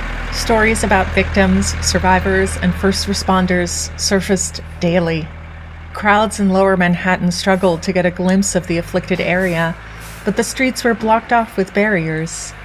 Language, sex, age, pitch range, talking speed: English, female, 30-49, 165-200 Hz, 140 wpm